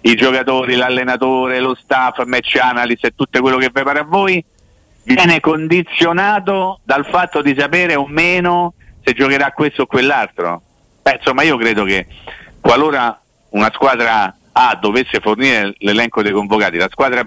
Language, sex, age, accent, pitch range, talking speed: Italian, male, 50-69, native, 110-150 Hz, 150 wpm